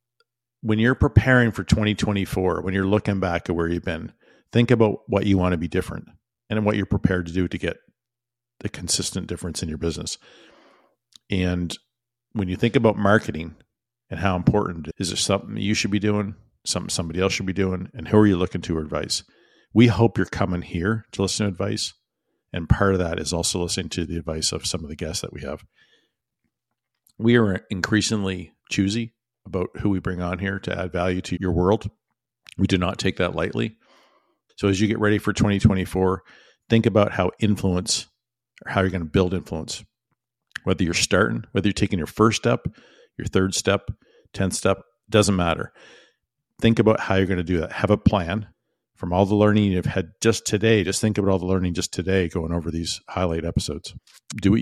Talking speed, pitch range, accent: 200 wpm, 90-110 Hz, American